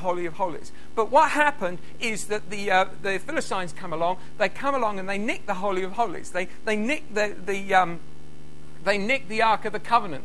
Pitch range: 195-280 Hz